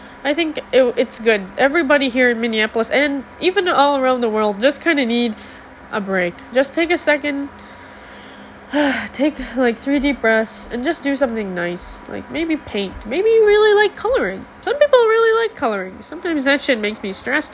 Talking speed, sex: 180 wpm, female